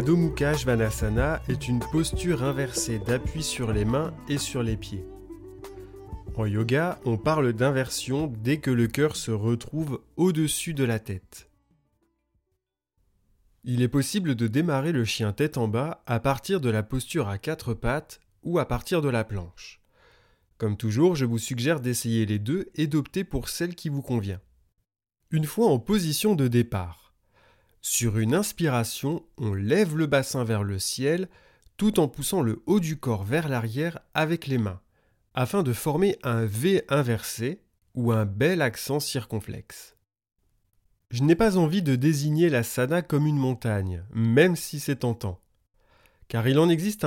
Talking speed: 160 wpm